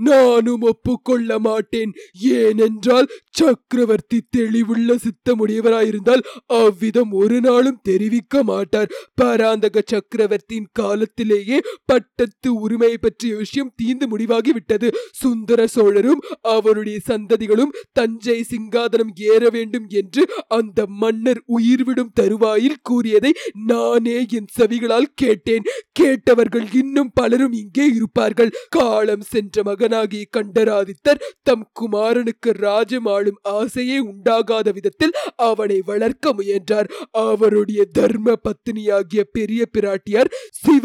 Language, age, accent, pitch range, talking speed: Tamil, 30-49, native, 220-250 Hz, 85 wpm